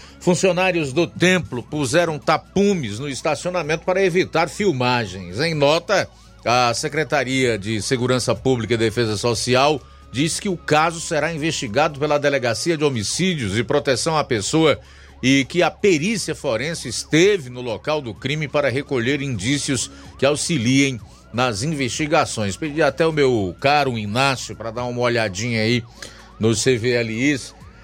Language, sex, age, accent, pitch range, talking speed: Portuguese, male, 40-59, Brazilian, 120-160 Hz, 140 wpm